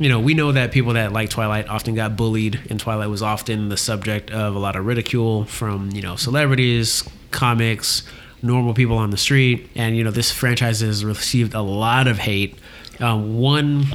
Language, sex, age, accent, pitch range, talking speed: English, male, 20-39, American, 110-125 Hz, 200 wpm